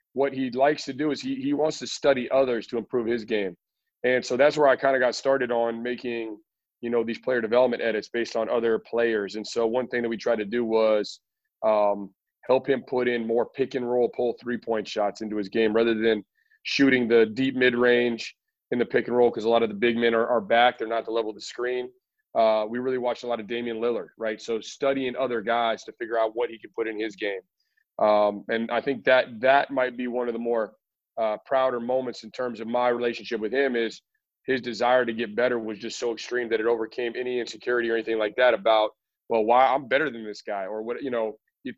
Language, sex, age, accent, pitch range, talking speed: English, male, 30-49, American, 115-130 Hz, 240 wpm